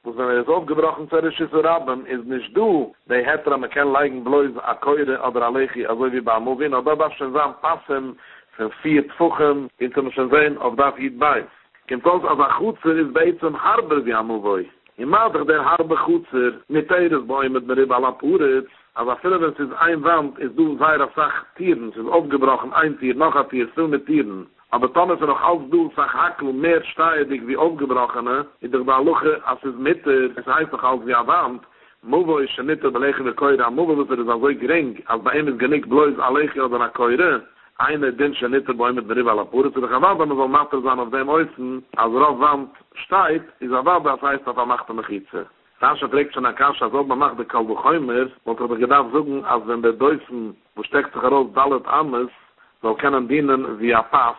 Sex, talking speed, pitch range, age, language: male, 135 wpm, 125-155 Hz, 50-69, English